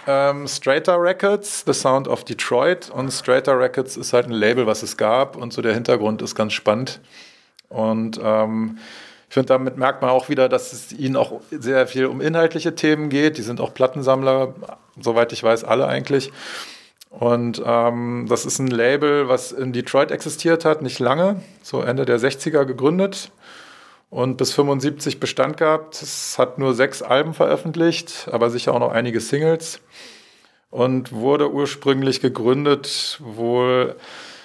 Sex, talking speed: male, 160 wpm